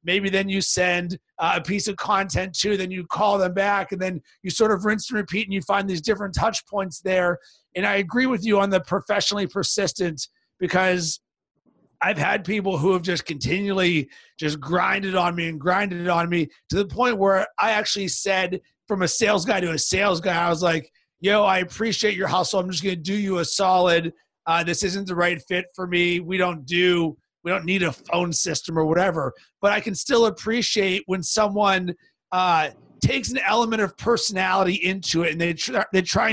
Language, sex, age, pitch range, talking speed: English, male, 30-49, 175-200 Hz, 205 wpm